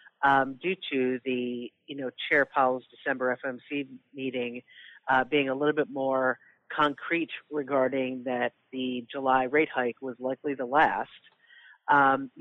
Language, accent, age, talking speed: English, American, 40-59, 140 wpm